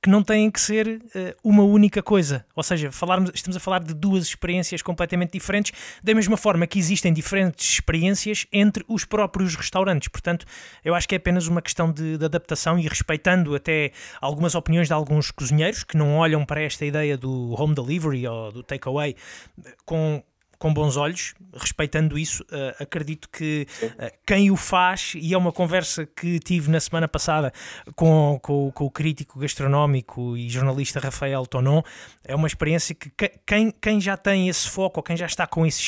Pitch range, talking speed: 145-180 Hz, 175 wpm